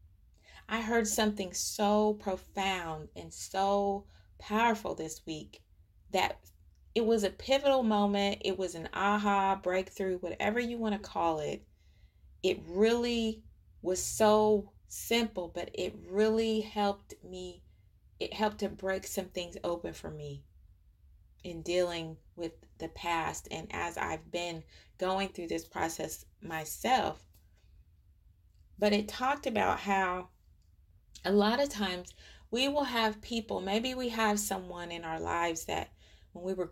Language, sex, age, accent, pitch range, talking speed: English, female, 30-49, American, 150-200 Hz, 135 wpm